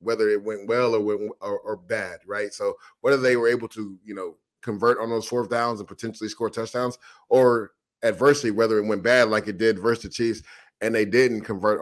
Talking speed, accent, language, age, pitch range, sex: 220 wpm, American, English, 30-49, 105-125 Hz, male